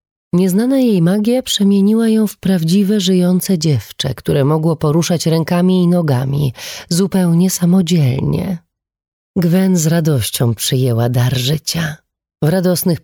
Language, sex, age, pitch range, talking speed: Polish, female, 30-49, 140-185 Hz, 115 wpm